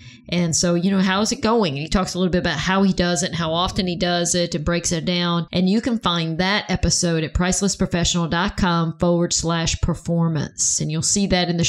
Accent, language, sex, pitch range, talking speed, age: American, English, female, 170-190 Hz, 235 wpm, 40-59